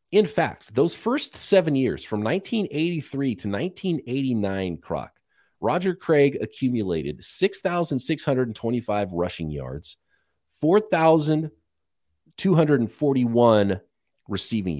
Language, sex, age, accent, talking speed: English, male, 40-59, American, 75 wpm